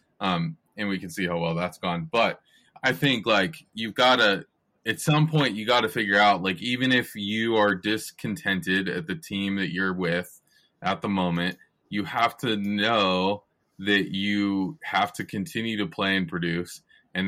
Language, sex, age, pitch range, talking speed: English, male, 20-39, 90-110 Hz, 185 wpm